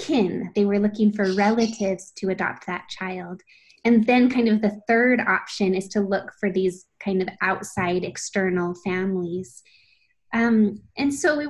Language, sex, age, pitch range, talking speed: English, female, 20-39, 190-230 Hz, 160 wpm